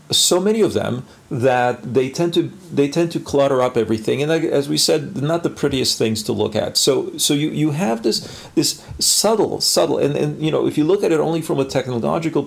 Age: 40-59